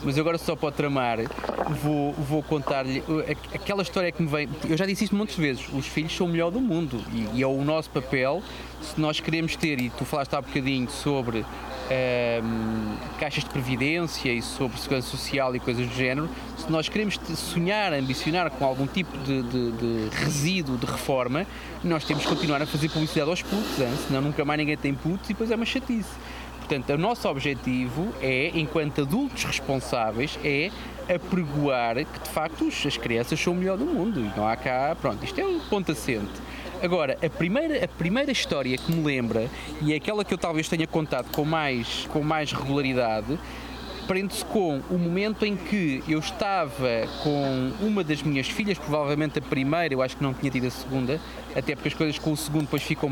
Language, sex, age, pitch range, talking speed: Portuguese, male, 20-39, 135-170 Hz, 200 wpm